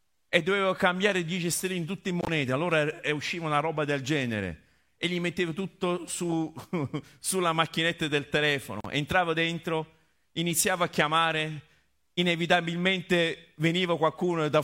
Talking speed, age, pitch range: 135 wpm, 50-69, 115-160 Hz